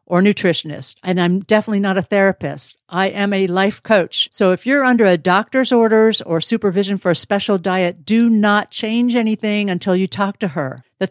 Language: English